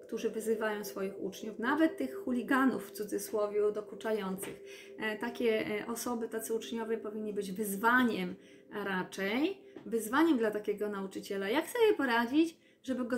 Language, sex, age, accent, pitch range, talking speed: Polish, female, 20-39, native, 205-245 Hz, 125 wpm